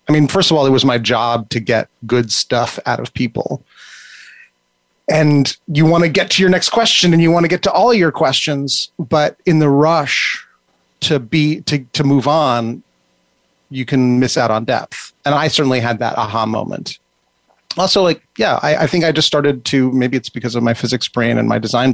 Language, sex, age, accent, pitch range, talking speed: English, male, 30-49, American, 120-165 Hz, 210 wpm